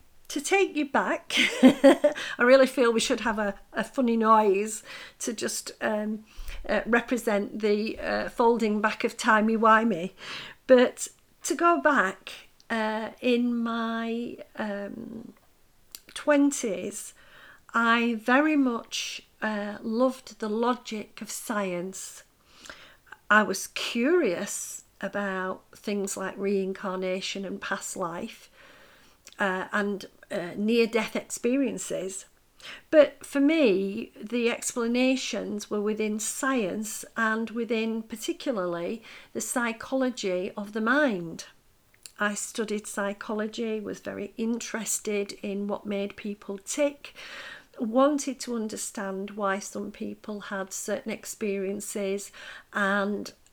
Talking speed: 105 wpm